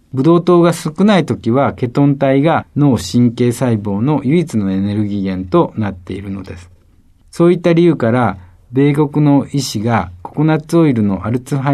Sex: male